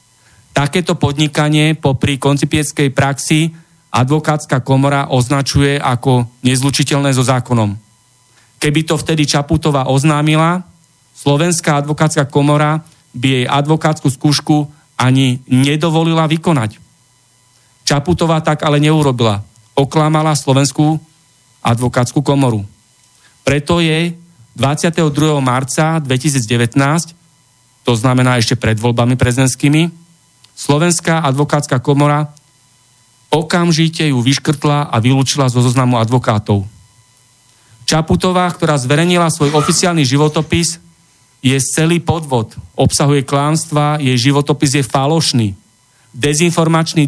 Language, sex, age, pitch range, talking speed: Slovak, male, 40-59, 125-155 Hz, 95 wpm